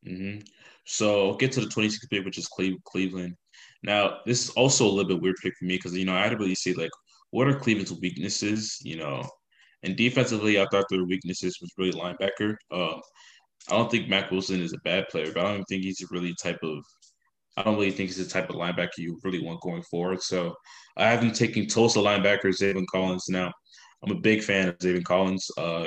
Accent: American